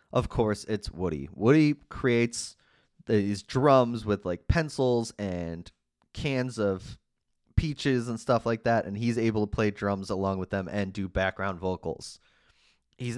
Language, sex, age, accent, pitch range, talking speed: English, male, 30-49, American, 95-120 Hz, 150 wpm